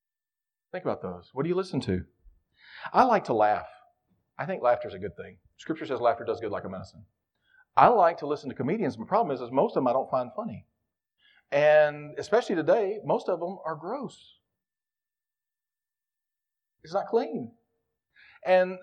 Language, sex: English, male